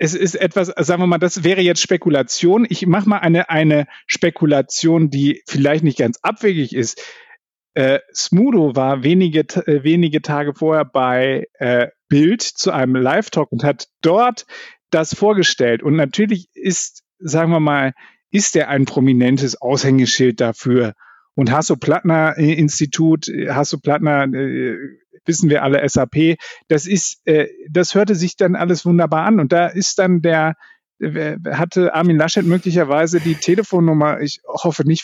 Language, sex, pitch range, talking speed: German, male, 140-175 Hz, 145 wpm